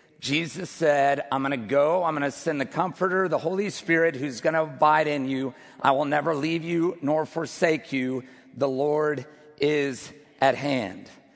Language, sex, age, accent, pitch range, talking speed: English, male, 50-69, American, 140-160 Hz, 180 wpm